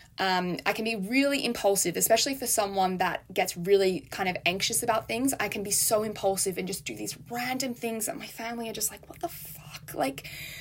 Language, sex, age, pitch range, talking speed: English, female, 10-29, 185-240 Hz, 215 wpm